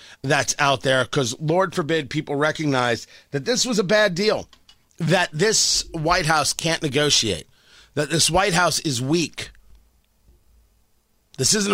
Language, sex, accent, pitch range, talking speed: English, male, American, 120-180 Hz, 145 wpm